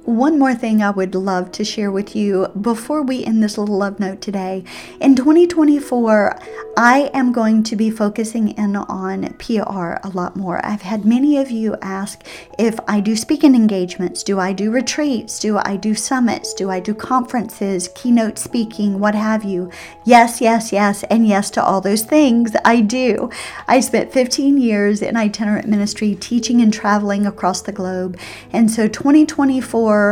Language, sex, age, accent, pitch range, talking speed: English, female, 40-59, American, 205-245 Hz, 175 wpm